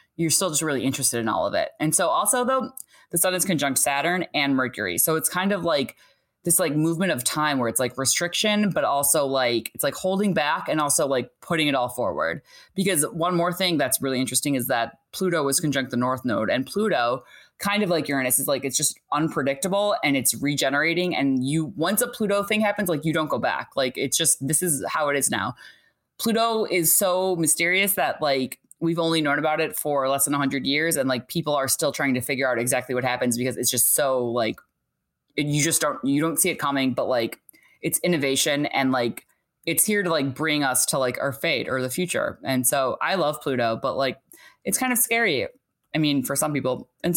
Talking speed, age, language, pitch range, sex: 225 wpm, 20-39, English, 135-180 Hz, female